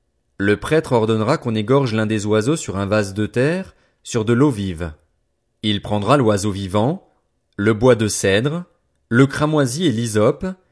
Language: French